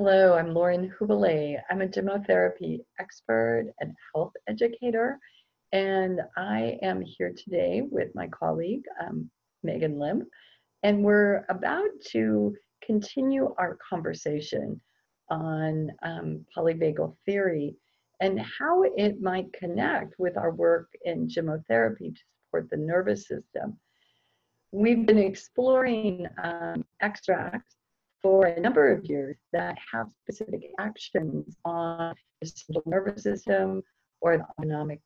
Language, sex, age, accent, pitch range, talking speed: English, female, 40-59, American, 150-195 Hz, 120 wpm